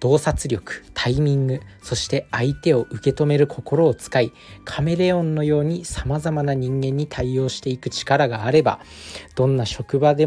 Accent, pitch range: native, 115-150 Hz